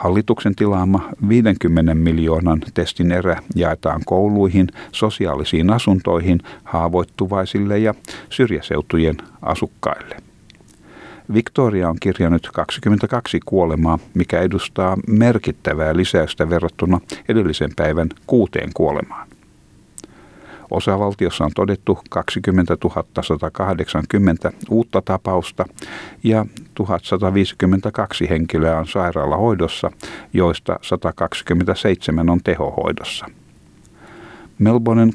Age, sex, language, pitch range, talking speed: 50-69, male, Finnish, 85-100 Hz, 75 wpm